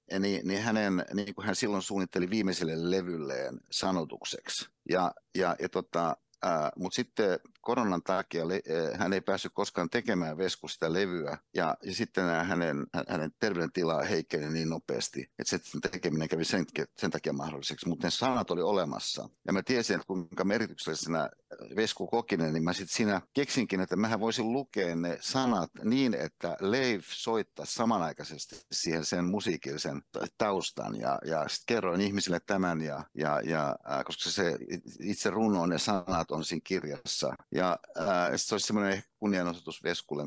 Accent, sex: native, male